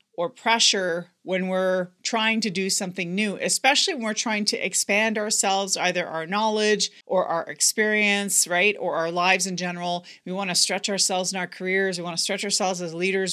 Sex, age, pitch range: female, 40-59, 175-220 Hz